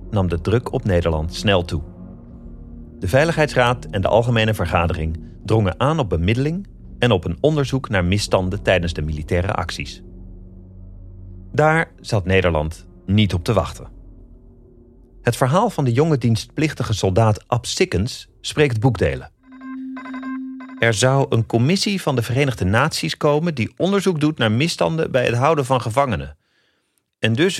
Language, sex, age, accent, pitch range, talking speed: Dutch, male, 40-59, Dutch, 95-145 Hz, 145 wpm